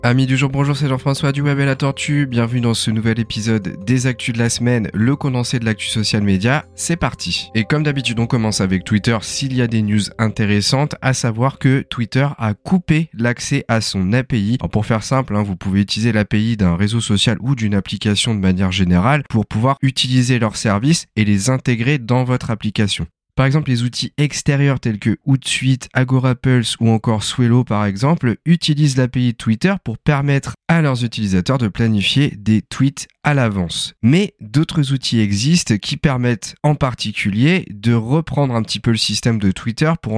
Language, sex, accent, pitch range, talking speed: French, male, French, 110-140 Hz, 190 wpm